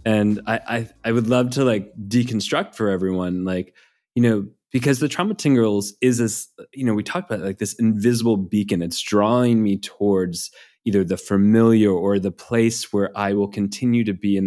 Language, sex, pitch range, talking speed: English, male, 95-115 Hz, 195 wpm